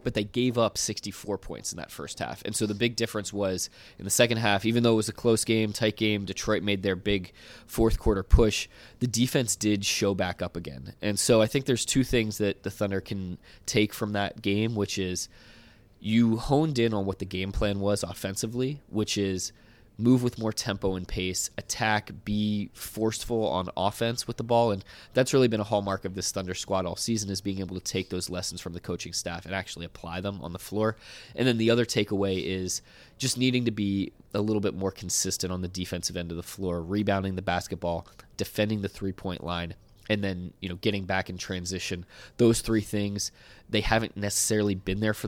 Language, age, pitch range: English, 20-39, 95-110 Hz